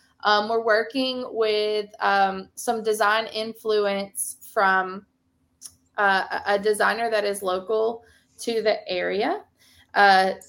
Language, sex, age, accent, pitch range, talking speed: English, female, 20-39, American, 190-225 Hz, 110 wpm